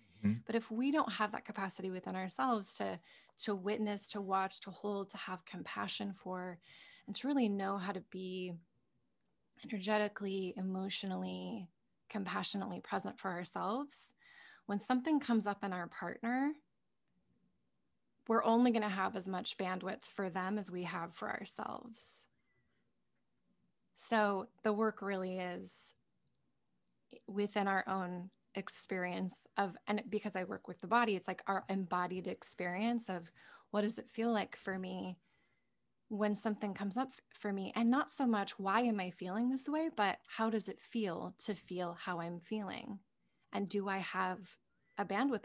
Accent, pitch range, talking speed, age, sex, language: American, 185-225 Hz, 155 wpm, 20-39, female, English